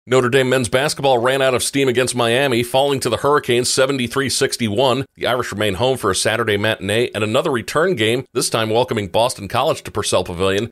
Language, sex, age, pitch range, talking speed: English, male, 40-59, 100-125 Hz, 195 wpm